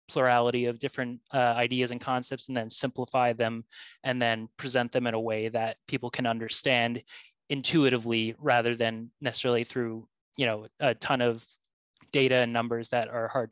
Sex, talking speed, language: male, 170 wpm, English